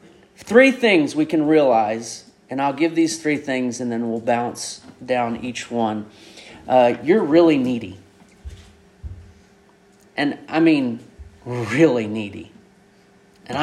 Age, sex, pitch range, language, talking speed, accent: 40-59, male, 120-185 Hz, English, 125 wpm, American